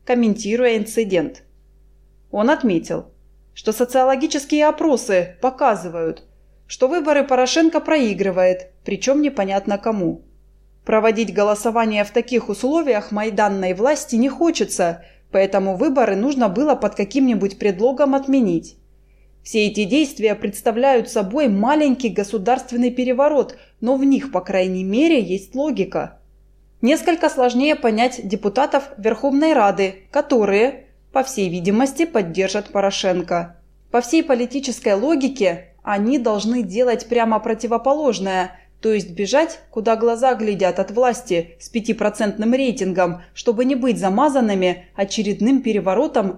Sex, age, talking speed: female, 20-39, 110 wpm